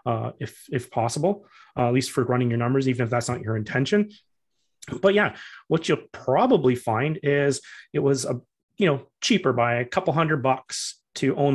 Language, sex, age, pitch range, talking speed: English, male, 30-49, 125-150 Hz, 190 wpm